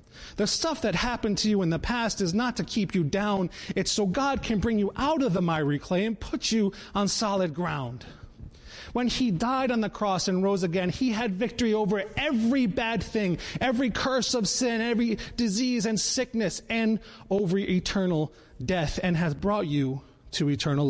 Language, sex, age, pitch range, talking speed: English, male, 30-49, 170-230 Hz, 190 wpm